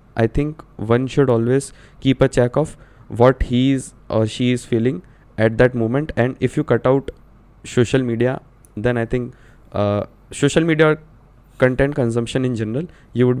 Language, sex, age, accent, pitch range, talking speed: Hindi, male, 20-39, native, 115-135 Hz, 170 wpm